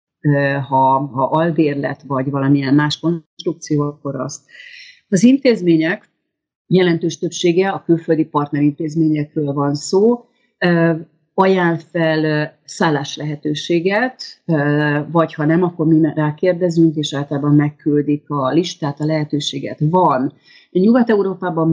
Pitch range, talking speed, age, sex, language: 145-175 Hz, 105 wpm, 40-59, female, Hungarian